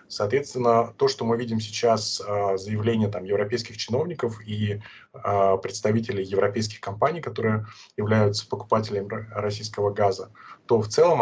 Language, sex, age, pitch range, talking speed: Russian, male, 20-39, 105-120 Hz, 110 wpm